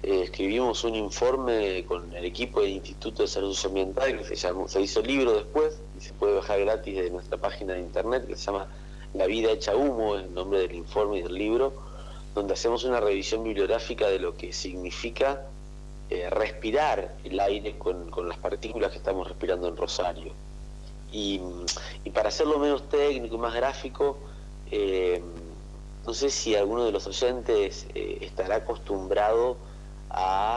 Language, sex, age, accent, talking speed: Spanish, male, 40-59, Argentinian, 170 wpm